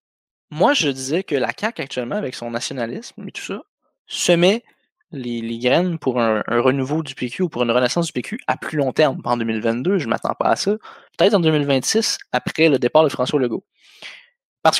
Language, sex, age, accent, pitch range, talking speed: French, male, 20-39, Canadian, 125-185 Hz, 205 wpm